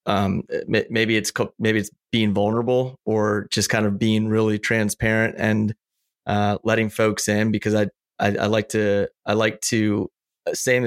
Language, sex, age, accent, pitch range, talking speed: English, male, 30-49, American, 105-120 Hz, 160 wpm